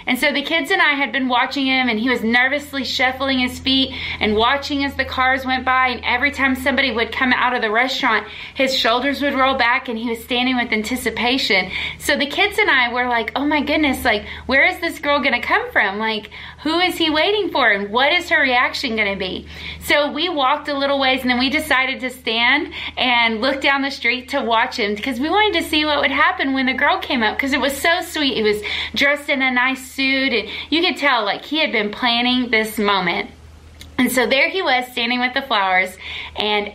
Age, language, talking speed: 30-49, English, 235 wpm